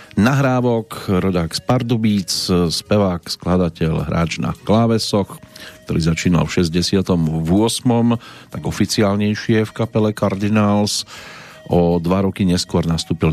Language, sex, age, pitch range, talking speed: Slovak, male, 40-59, 85-115 Hz, 100 wpm